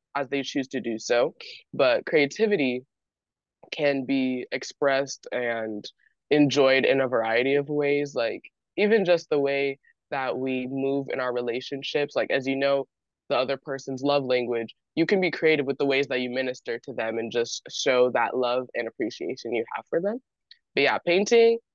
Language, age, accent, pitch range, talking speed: English, 20-39, American, 130-165 Hz, 175 wpm